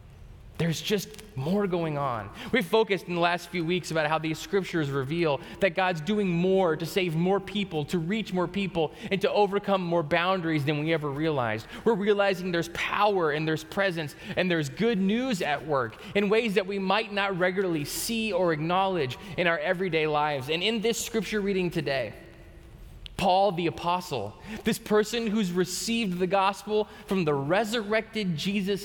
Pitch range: 165-205 Hz